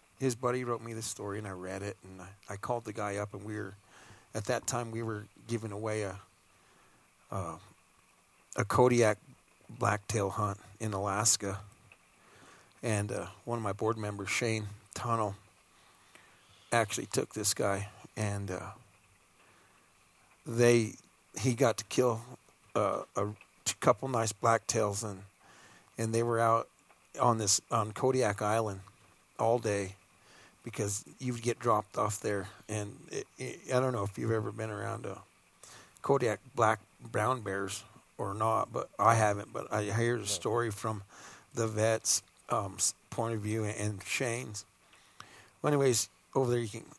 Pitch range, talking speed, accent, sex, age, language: 100-120 Hz, 155 wpm, American, male, 40-59, English